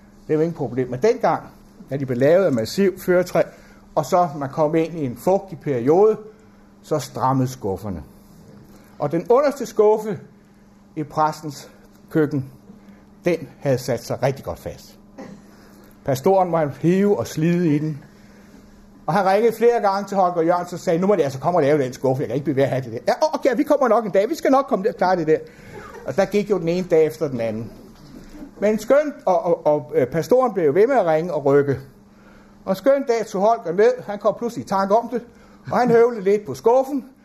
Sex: male